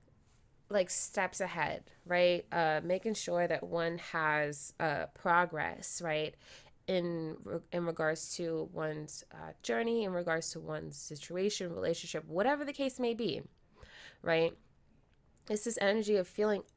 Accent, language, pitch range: American, English, 165-205 Hz